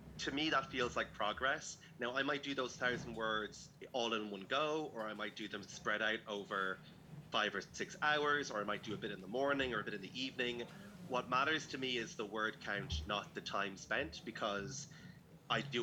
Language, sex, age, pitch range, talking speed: English, male, 30-49, 105-135 Hz, 225 wpm